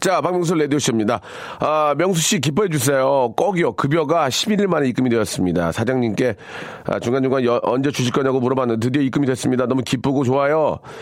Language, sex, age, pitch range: Korean, male, 40-59, 125-170 Hz